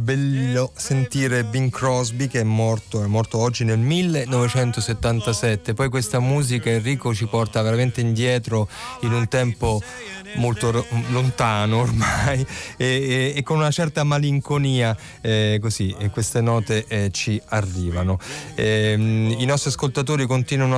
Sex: male